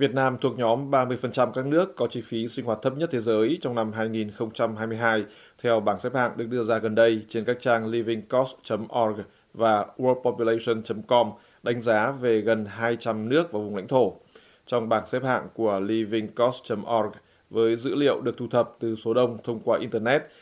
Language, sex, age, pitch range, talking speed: Vietnamese, male, 20-39, 110-120 Hz, 180 wpm